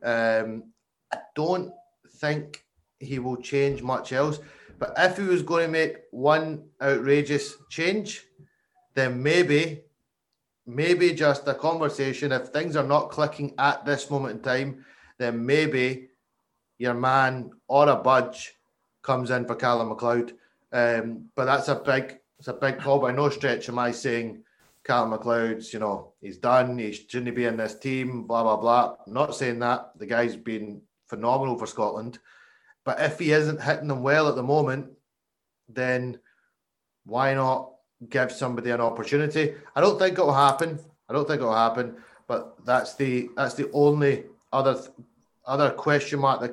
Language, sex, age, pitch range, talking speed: English, male, 30-49, 120-145 Hz, 165 wpm